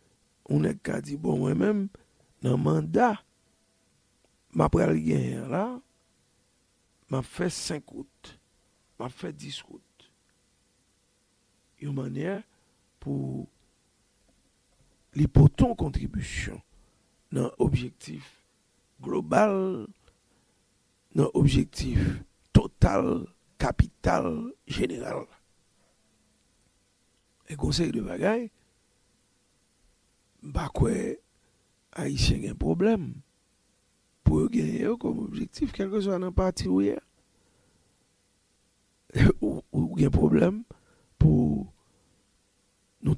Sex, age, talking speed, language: male, 60-79, 80 wpm, English